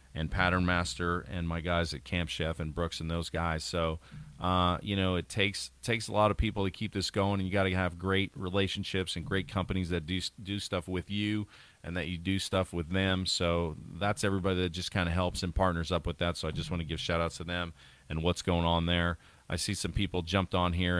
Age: 40-59